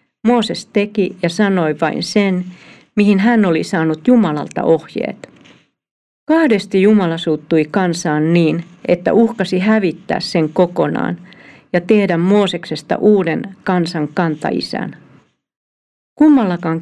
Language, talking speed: Finnish, 105 wpm